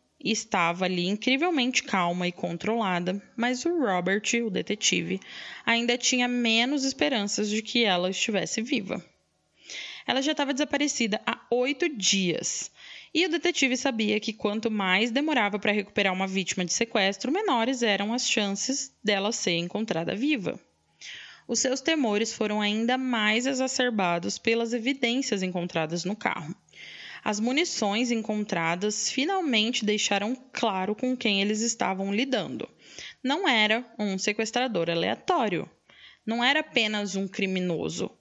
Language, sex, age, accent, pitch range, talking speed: Portuguese, female, 10-29, Brazilian, 190-250 Hz, 130 wpm